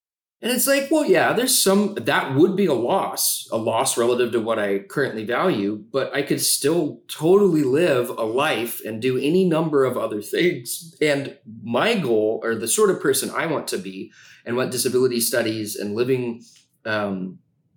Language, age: English, 30-49